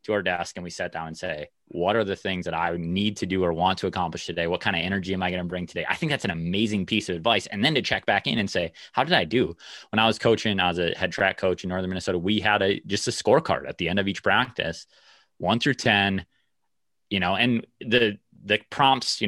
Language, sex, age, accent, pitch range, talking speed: English, male, 20-39, American, 90-110 Hz, 270 wpm